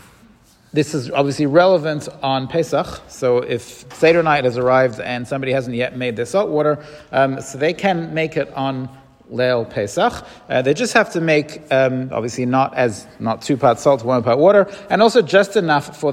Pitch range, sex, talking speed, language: 130-165 Hz, male, 190 wpm, English